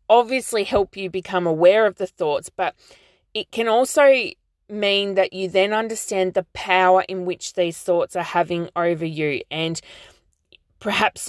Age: 20-39